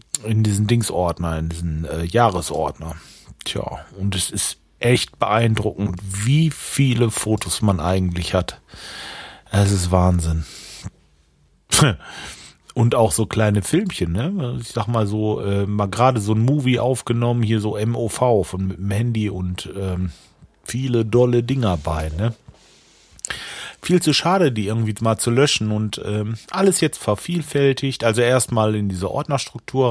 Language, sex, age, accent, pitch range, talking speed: German, male, 40-59, German, 100-125 Hz, 140 wpm